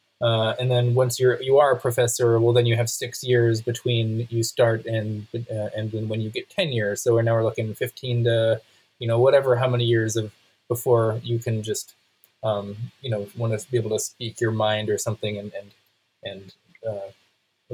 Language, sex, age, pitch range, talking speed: English, male, 20-39, 110-130 Hz, 210 wpm